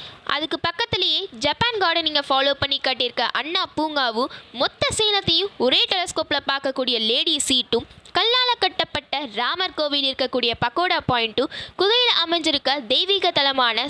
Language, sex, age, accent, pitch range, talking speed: Tamil, female, 20-39, native, 255-360 Hz, 85 wpm